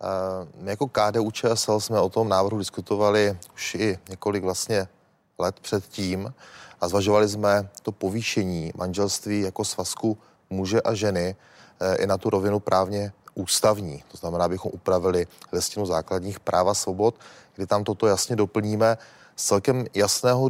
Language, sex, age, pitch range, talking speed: Czech, male, 30-49, 100-120 Hz, 140 wpm